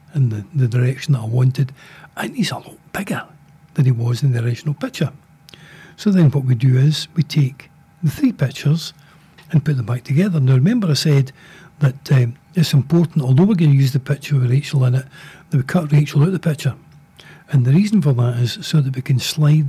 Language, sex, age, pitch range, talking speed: English, male, 60-79, 130-160 Hz, 225 wpm